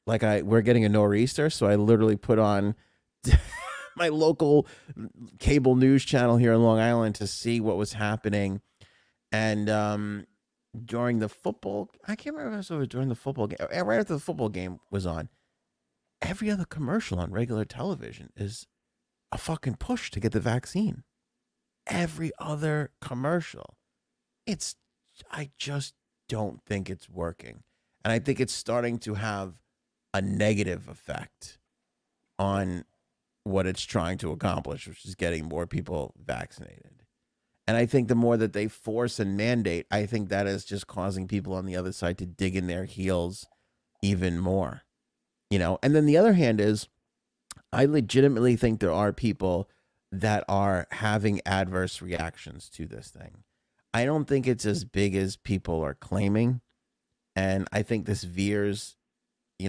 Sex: male